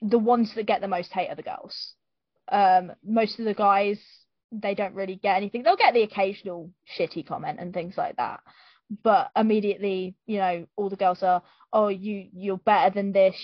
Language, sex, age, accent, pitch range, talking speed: English, female, 20-39, British, 185-220 Hz, 200 wpm